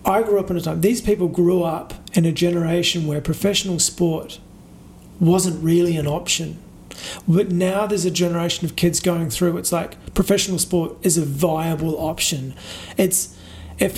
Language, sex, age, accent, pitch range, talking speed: English, male, 30-49, Australian, 160-185 Hz, 170 wpm